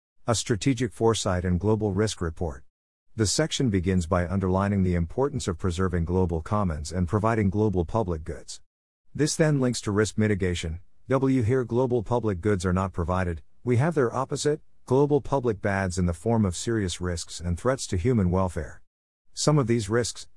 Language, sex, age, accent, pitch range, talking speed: English, male, 50-69, American, 90-120 Hz, 175 wpm